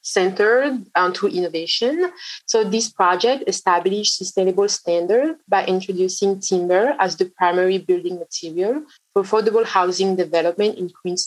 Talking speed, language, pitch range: 130 wpm, English, 180-220 Hz